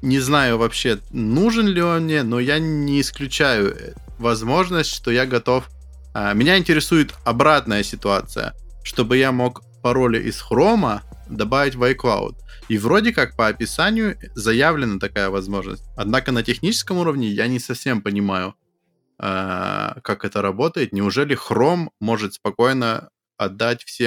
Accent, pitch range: native, 105-150 Hz